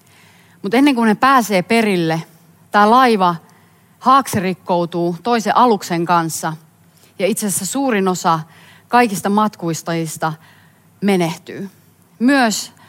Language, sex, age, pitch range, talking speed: Finnish, female, 30-49, 170-220 Hz, 95 wpm